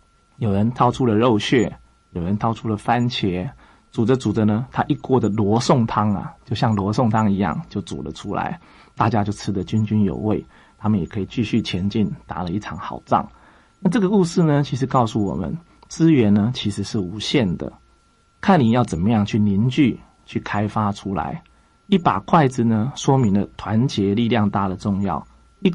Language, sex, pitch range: Chinese, male, 105-135 Hz